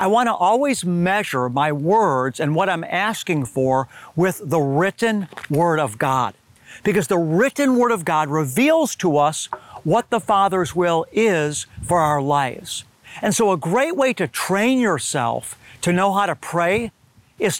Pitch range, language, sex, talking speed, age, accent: 150-200 Hz, English, male, 165 wpm, 50-69, American